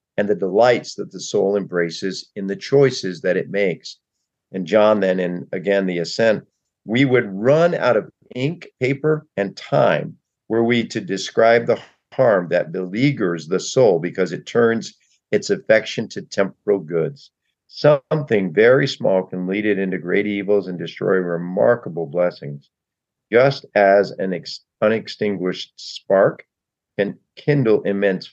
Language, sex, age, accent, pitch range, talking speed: English, male, 50-69, American, 95-115 Hz, 145 wpm